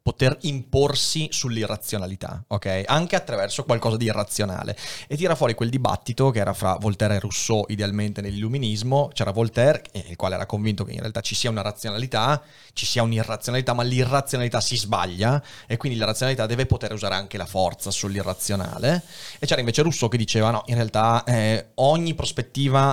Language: Italian